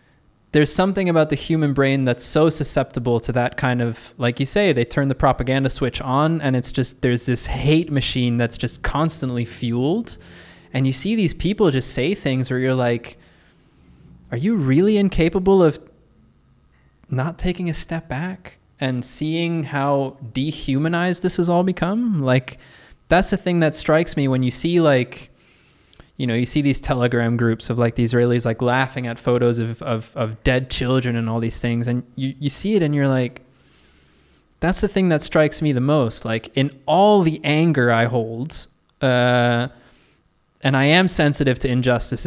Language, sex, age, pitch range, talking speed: English, male, 20-39, 120-155 Hz, 180 wpm